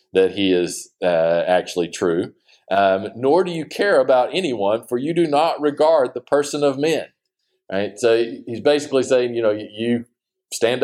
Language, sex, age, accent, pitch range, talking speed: English, male, 40-59, American, 95-120 Hz, 175 wpm